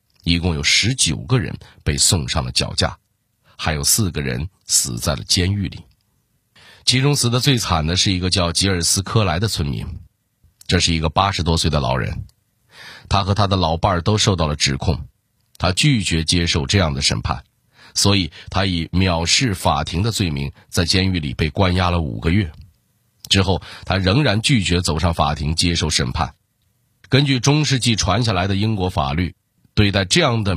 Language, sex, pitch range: Chinese, male, 85-110 Hz